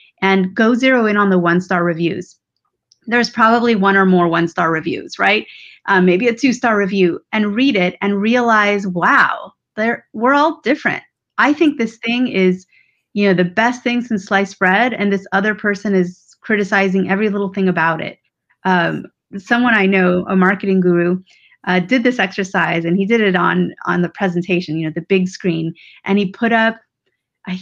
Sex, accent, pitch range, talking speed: female, American, 185-230 Hz, 185 wpm